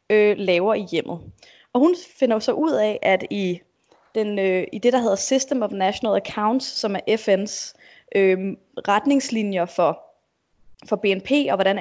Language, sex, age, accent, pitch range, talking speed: Danish, female, 20-39, native, 195-240 Hz, 160 wpm